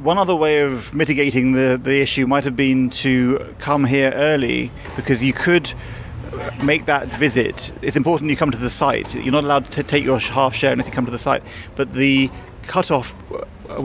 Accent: British